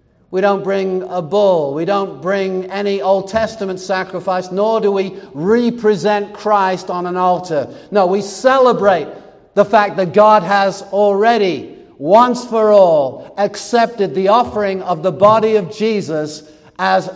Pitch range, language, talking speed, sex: 165-205 Hz, English, 145 wpm, male